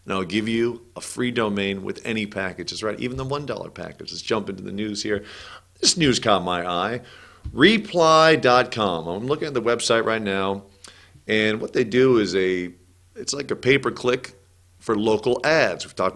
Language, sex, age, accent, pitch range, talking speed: English, male, 40-59, American, 100-130 Hz, 180 wpm